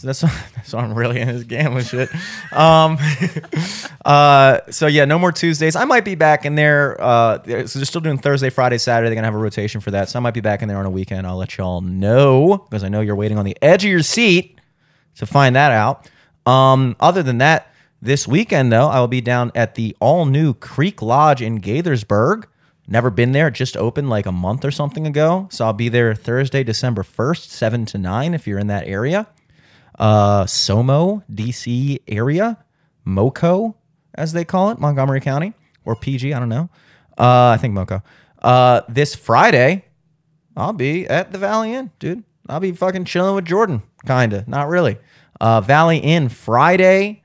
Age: 30-49